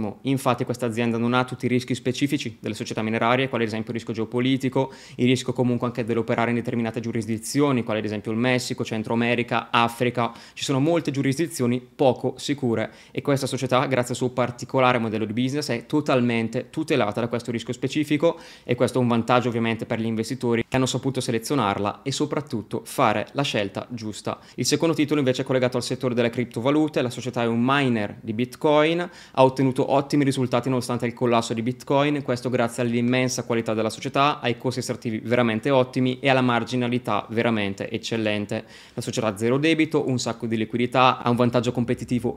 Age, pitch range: 20-39, 115-130 Hz